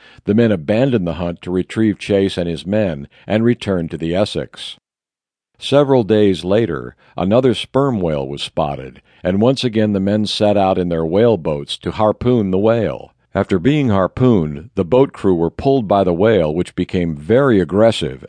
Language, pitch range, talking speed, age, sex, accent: English, 85-115 Hz, 175 wpm, 60-79, male, American